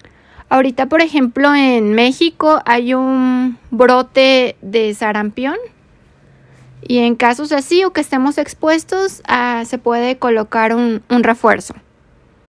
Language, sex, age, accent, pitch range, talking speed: Spanish, female, 20-39, Mexican, 230-280 Hz, 115 wpm